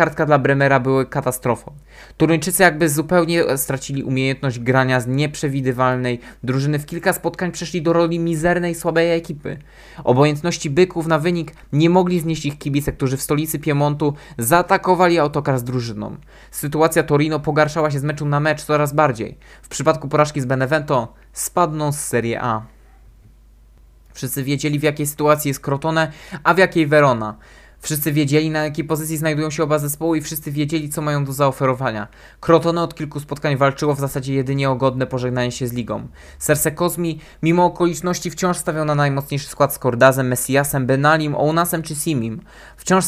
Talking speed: 165 wpm